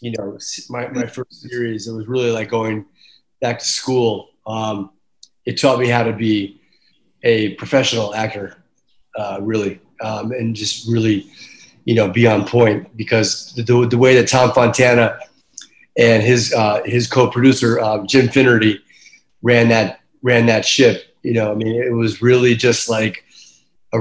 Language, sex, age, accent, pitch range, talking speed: English, male, 30-49, American, 110-130 Hz, 160 wpm